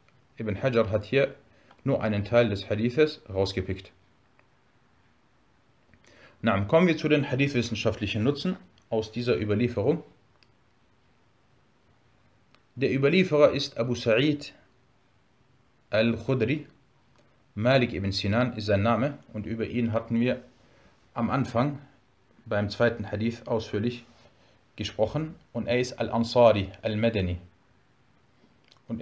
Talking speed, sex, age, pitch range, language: 100 wpm, male, 40-59, 110-135 Hz, German